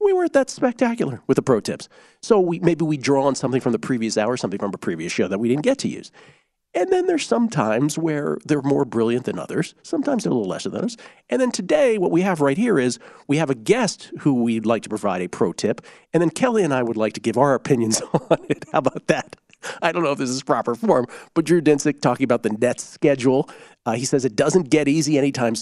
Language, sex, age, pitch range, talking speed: English, male, 40-59, 120-160 Hz, 255 wpm